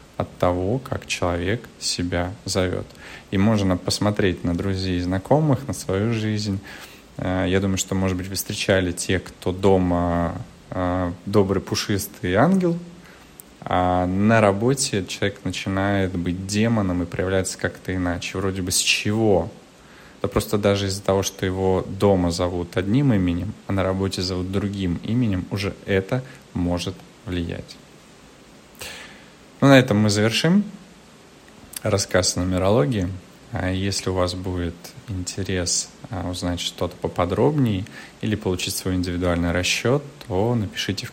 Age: 20-39